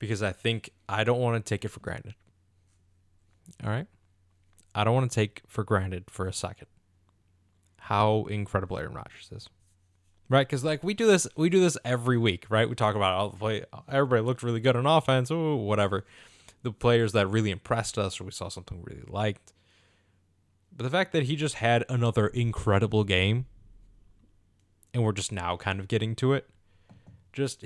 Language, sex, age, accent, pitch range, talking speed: English, male, 20-39, American, 95-115 Hz, 190 wpm